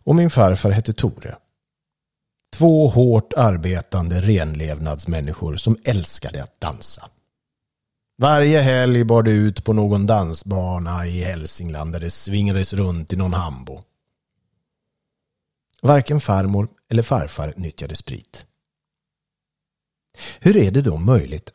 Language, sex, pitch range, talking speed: Swedish, male, 90-120 Hz, 110 wpm